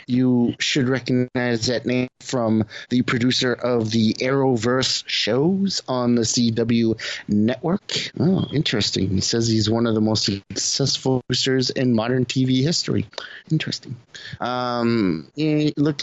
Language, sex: English, male